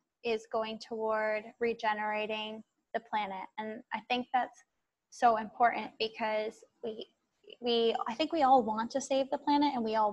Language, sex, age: English, female, 10-29